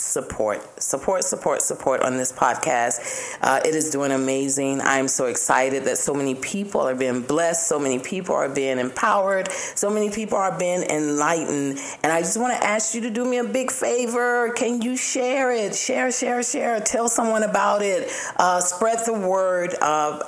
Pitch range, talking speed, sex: 155-225 Hz, 185 wpm, female